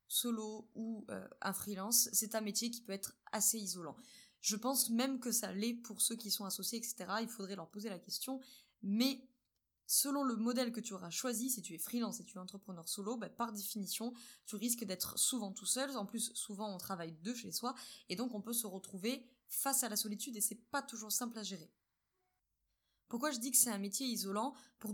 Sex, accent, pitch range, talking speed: female, French, 200-240 Hz, 220 wpm